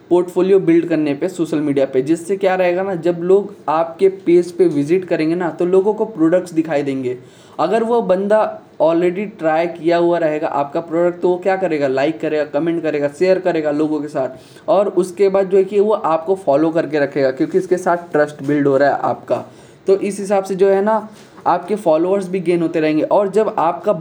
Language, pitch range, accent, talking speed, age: Hindi, 150-190 Hz, native, 210 wpm, 20-39